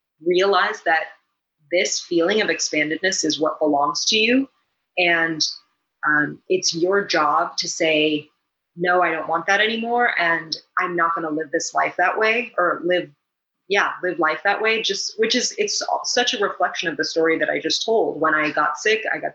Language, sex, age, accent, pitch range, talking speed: English, female, 30-49, American, 160-195 Hz, 190 wpm